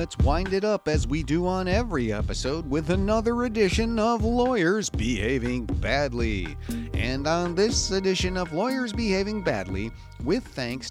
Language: English